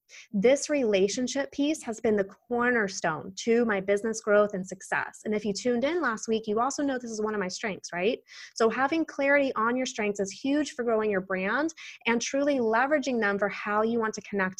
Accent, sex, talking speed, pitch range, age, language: American, female, 215 wpm, 200-255 Hz, 20-39, English